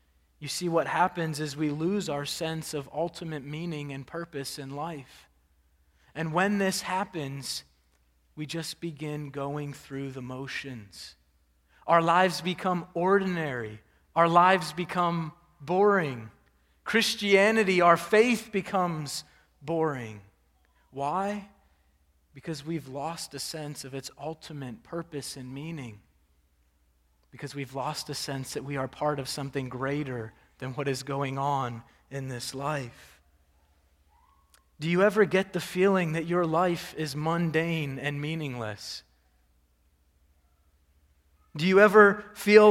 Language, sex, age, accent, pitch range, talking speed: English, male, 30-49, American, 130-190 Hz, 125 wpm